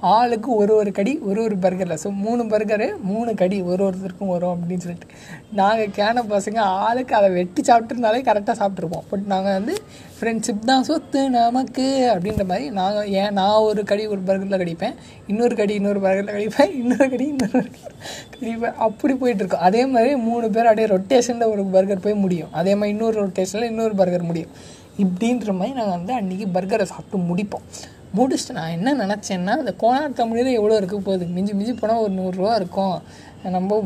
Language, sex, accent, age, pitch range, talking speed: Tamil, female, native, 20-39, 190-235 Hz, 170 wpm